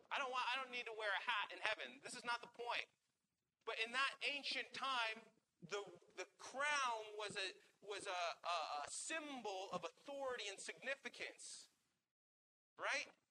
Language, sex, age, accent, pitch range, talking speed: English, male, 40-59, American, 205-265 Hz, 165 wpm